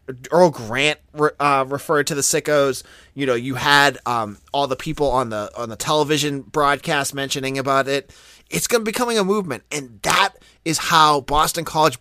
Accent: American